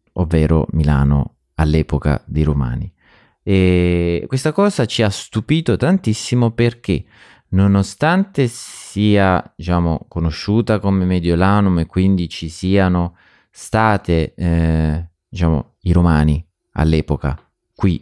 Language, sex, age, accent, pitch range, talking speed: Italian, male, 30-49, native, 85-110 Hz, 100 wpm